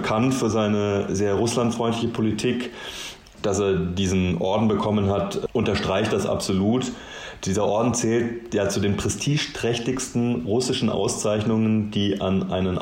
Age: 30-49